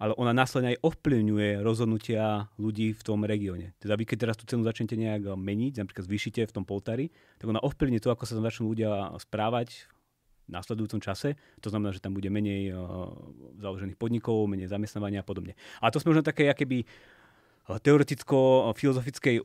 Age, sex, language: 30-49, male, Slovak